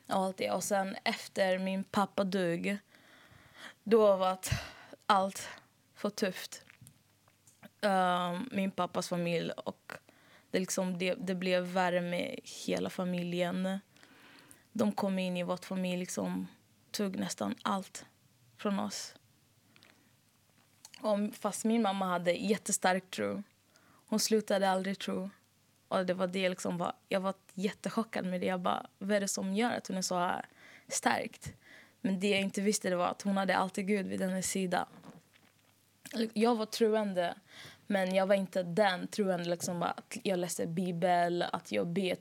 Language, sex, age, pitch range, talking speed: Swedish, female, 20-39, 180-200 Hz, 150 wpm